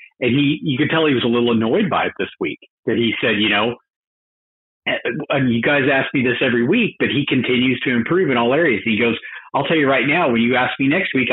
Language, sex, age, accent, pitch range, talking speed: English, male, 50-69, American, 110-140 Hz, 255 wpm